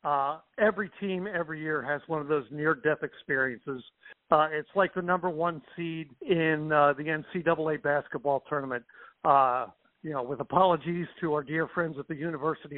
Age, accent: 60-79, American